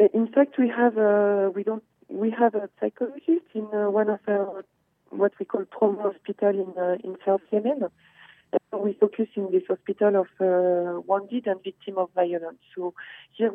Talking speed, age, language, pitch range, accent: 185 wpm, 40-59, English, 185-210 Hz, French